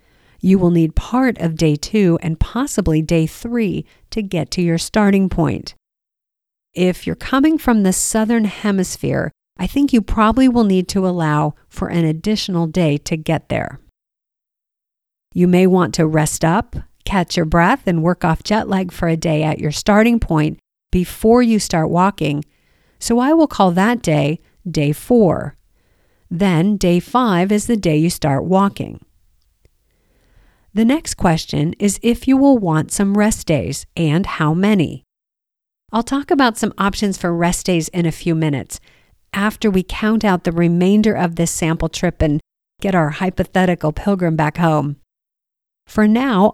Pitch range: 160-210 Hz